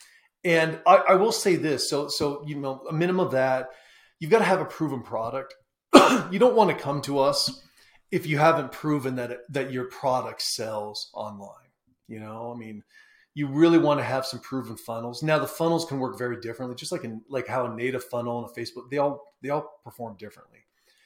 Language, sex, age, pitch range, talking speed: English, male, 30-49, 120-150 Hz, 215 wpm